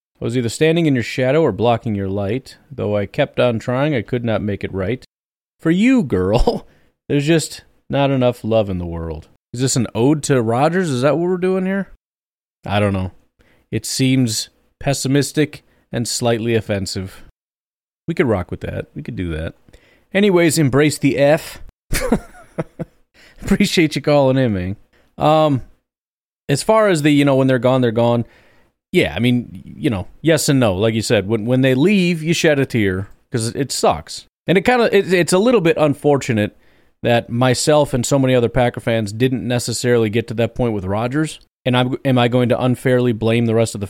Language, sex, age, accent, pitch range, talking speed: English, male, 30-49, American, 115-150 Hz, 195 wpm